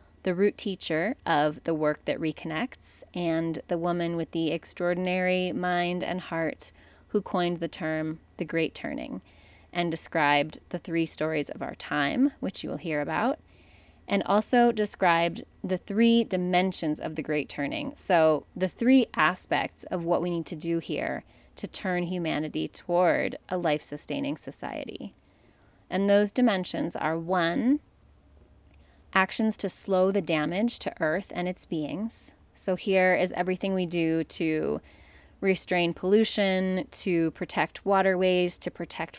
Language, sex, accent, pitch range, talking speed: English, female, American, 160-195 Hz, 145 wpm